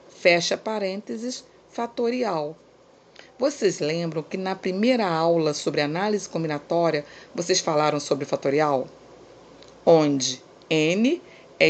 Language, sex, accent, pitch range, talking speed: Portuguese, female, Brazilian, 155-225 Hz, 95 wpm